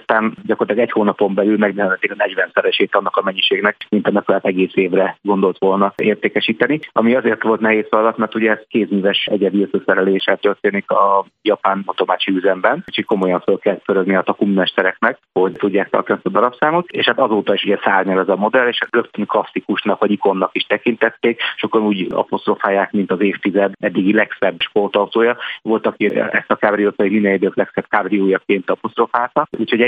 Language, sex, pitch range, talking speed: Hungarian, male, 95-115 Hz, 165 wpm